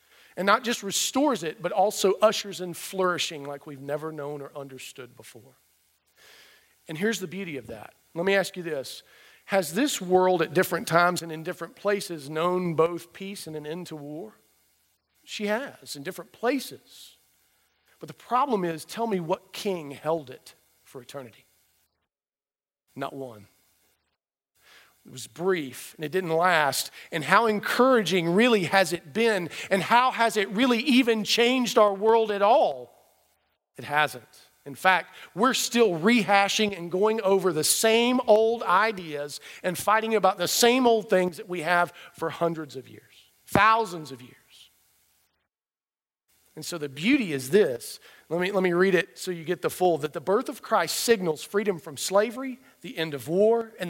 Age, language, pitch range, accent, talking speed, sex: 40-59, English, 145-210 Hz, American, 170 wpm, male